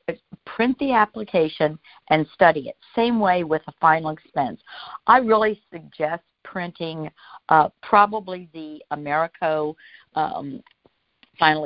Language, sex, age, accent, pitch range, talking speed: English, female, 60-79, American, 155-205 Hz, 115 wpm